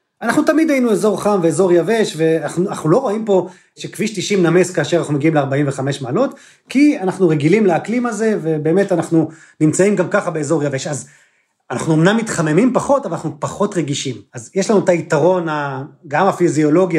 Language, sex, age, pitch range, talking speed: Hebrew, male, 30-49, 145-190 Hz, 165 wpm